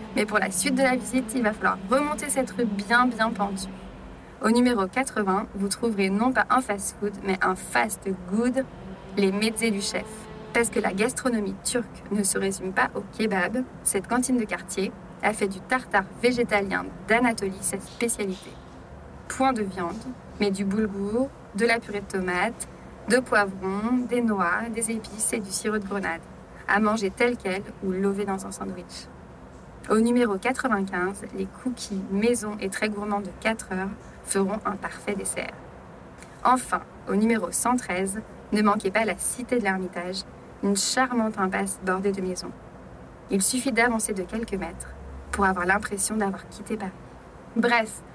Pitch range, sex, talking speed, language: 195-235 Hz, female, 165 wpm, French